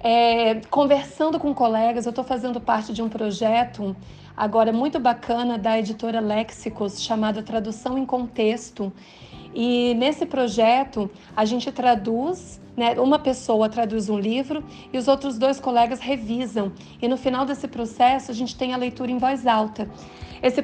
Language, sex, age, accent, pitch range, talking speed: Portuguese, female, 40-59, Brazilian, 220-255 Hz, 155 wpm